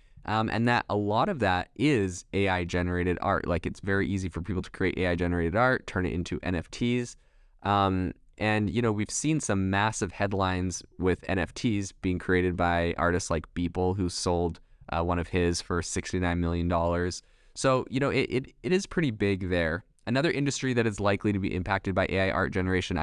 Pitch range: 90-105 Hz